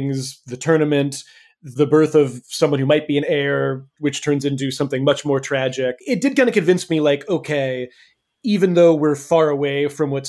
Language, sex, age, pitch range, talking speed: English, male, 30-49, 135-165 Hz, 190 wpm